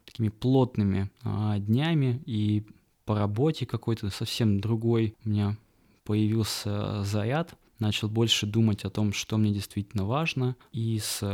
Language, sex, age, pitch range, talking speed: Russian, male, 20-39, 105-120 Hz, 125 wpm